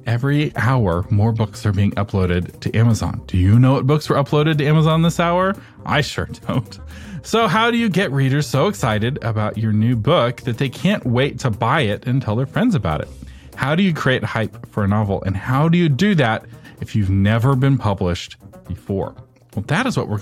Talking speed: 215 wpm